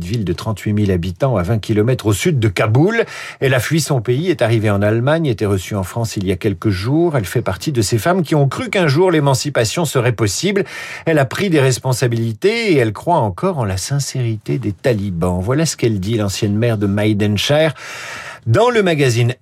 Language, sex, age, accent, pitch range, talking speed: French, male, 50-69, French, 110-155 Hz, 215 wpm